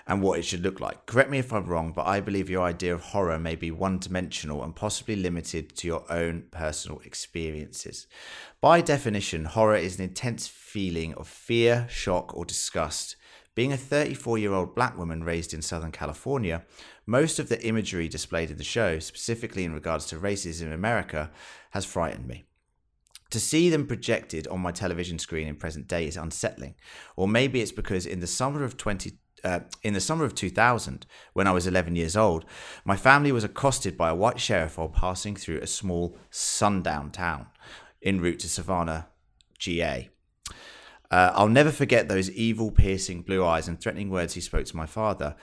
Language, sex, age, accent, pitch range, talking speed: English, male, 30-49, British, 80-110 Hz, 185 wpm